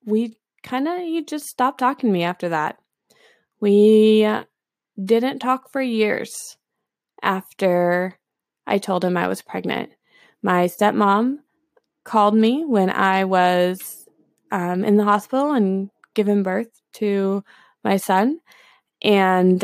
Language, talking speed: English, 125 wpm